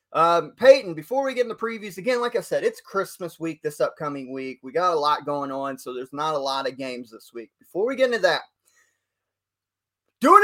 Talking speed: 220 wpm